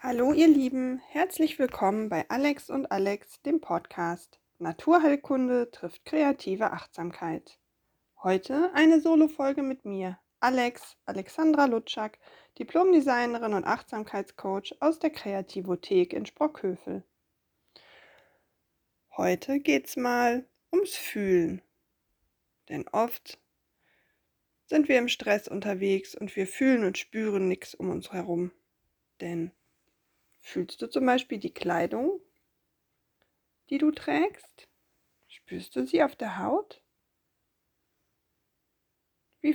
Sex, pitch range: female, 195-285 Hz